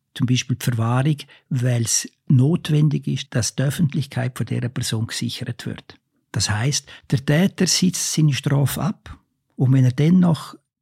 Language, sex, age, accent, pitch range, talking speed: German, male, 60-79, Austrian, 130-160 Hz, 155 wpm